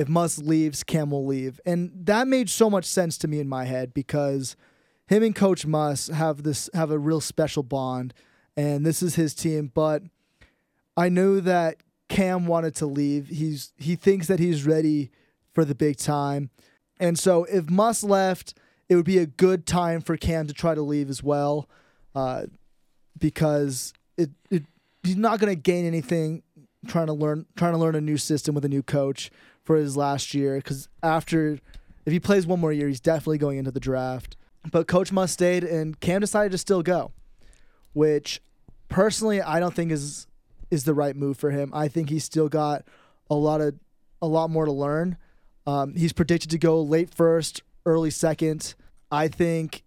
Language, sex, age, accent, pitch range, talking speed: English, male, 20-39, American, 145-175 Hz, 190 wpm